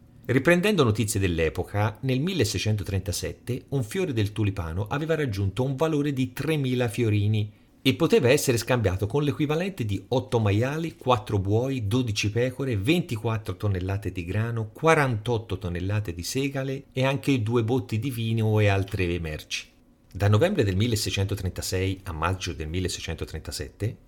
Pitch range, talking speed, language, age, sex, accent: 100-135 Hz, 135 wpm, Italian, 40-59, male, native